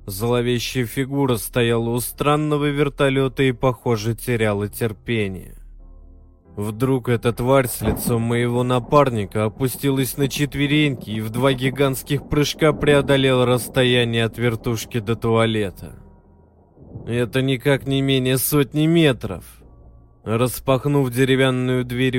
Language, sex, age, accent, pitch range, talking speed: Russian, male, 20-39, native, 110-140 Hz, 110 wpm